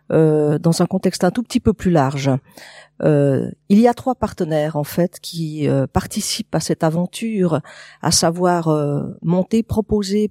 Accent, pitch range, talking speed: French, 160-210 Hz, 170 wpm